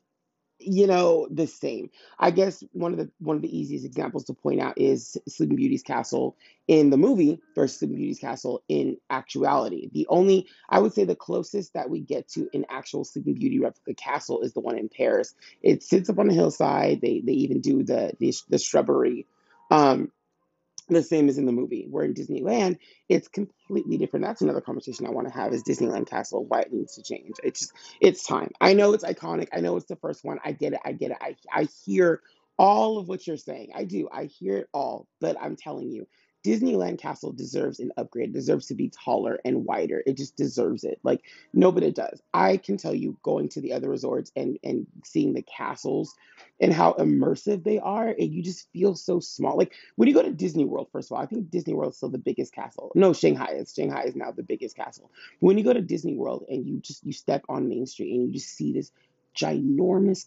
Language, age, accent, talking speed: English, 30-49, American, 220 wpm